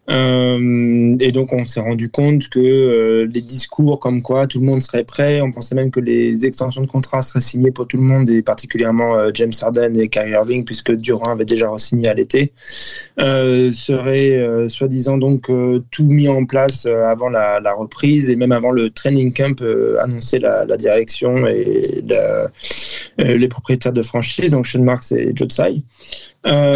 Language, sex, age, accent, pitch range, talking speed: French, male, 20-39, French, 120-135 Hz, 195 wpm